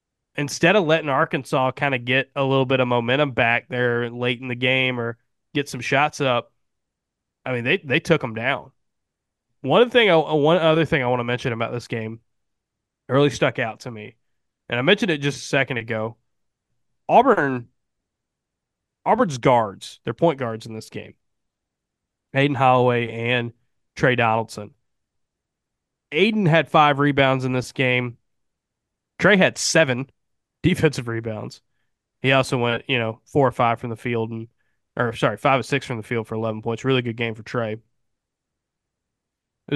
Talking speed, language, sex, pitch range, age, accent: 170 wpm, English, male, 120-140 Hz, 20-39, American